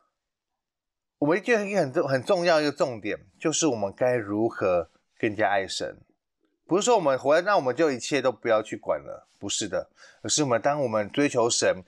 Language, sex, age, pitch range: Chinese, male, 20-39, 115-160 Hz